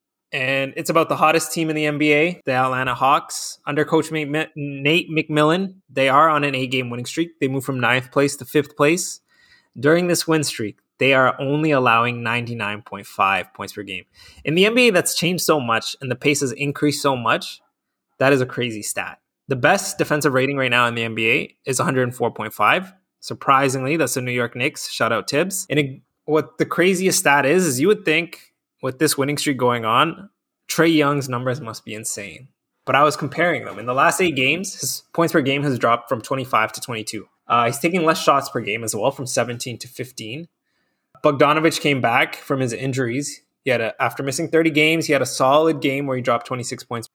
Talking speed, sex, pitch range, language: 200 wpm, male, 125-160 Hz, English